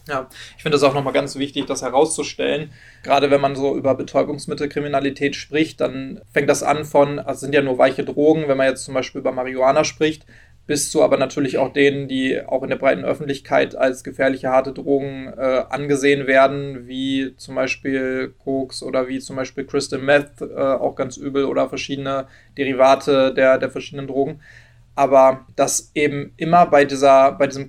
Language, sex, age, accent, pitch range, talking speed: German, male, 20-39, German, 135-145 Hz, 180 wpm